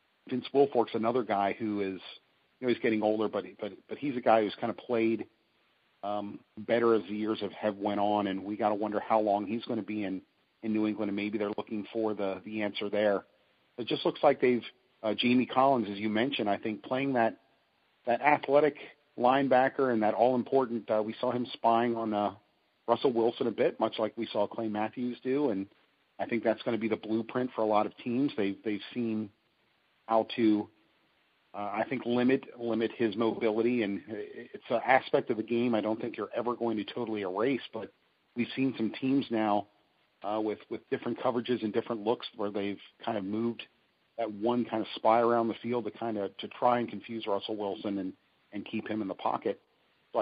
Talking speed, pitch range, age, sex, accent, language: 215 wpm, 105-120 Hz, 40-59, male, American, English